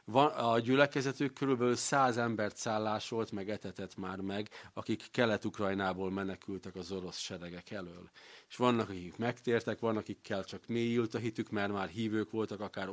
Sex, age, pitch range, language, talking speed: male, 40-59, 100-120 Hz, Hungarian, 150 wpm